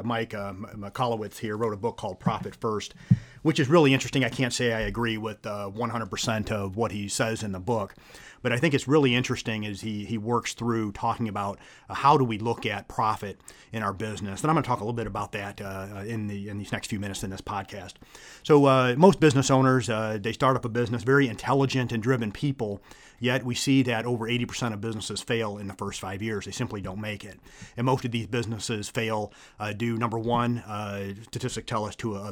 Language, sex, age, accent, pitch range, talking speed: English, male, 40-59, American, 105-120 Hz, 230 wpm